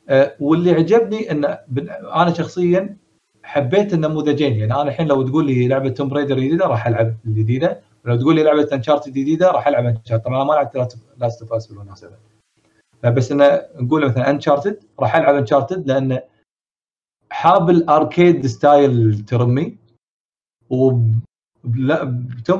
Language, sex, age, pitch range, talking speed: Arabic, male, 30-49, 120-150 Hz, 145 wpm